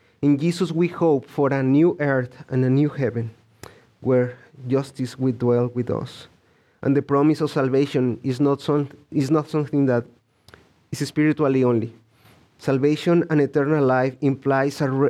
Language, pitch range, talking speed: English, 125-155 Hz, 160 wpm